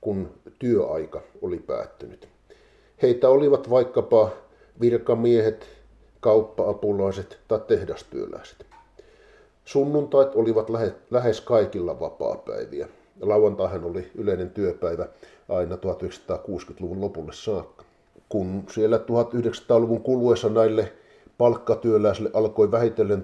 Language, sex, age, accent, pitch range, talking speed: Finnish, male, 50-69, native, 100-135 Hz, 85 wpm